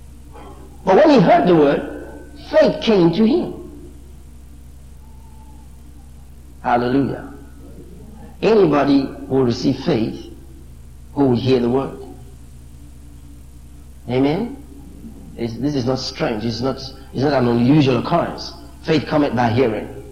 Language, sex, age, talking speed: English, male, 50-69, 110 wpm